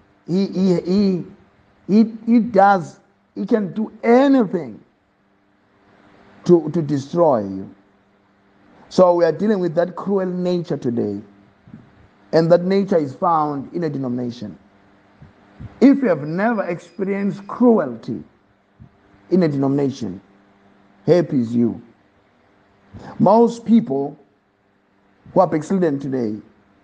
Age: 50-69